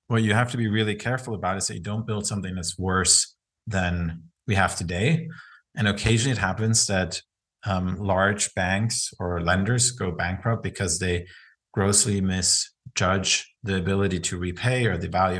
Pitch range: 95-115 Hz